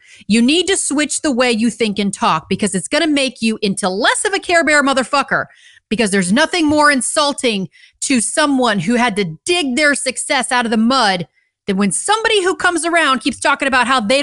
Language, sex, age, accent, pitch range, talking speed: English, female, 30-49, American, 200-290 Hz, 215 wpm